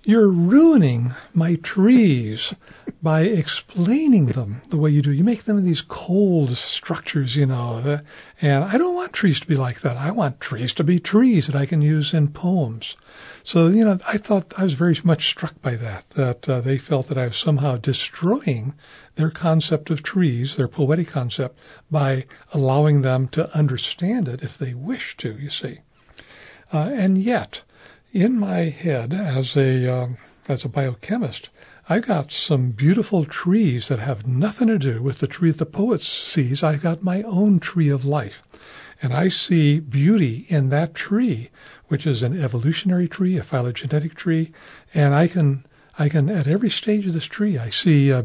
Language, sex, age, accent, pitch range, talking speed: English, male, 60-79, American, 135-180 Hz, 180 wpm